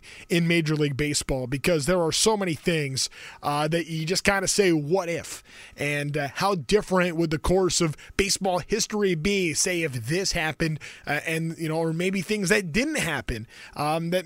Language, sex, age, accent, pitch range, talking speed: English, male, 20-39, American, 155-200 Hz, 190 wpm